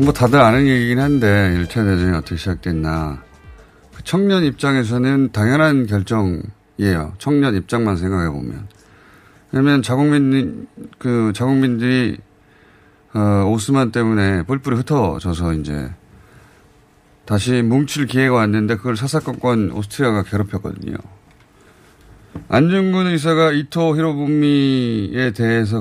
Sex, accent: male, native